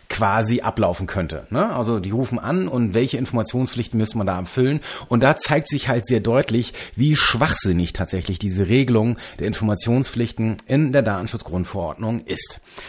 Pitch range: 110-155 Hz